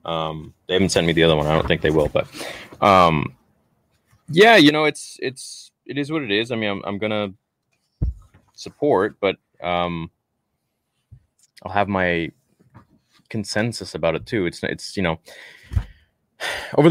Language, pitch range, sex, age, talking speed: English, 95-125 Hz, male, 20-39, 160 wpm